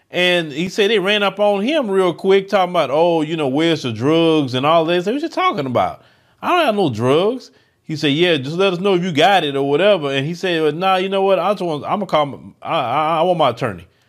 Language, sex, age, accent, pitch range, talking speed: English, male, 30-49, American, 135-195 Hz, 265 wpm